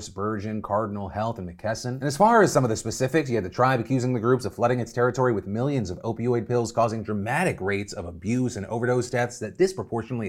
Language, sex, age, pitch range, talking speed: English, male, 30-49, 110-140 Hz, 225 wpm